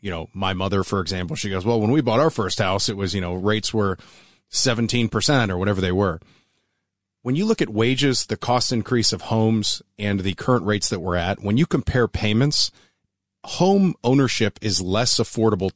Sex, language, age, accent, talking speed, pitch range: male, English, 30-49, American, 200 wpm, 95-120 Hz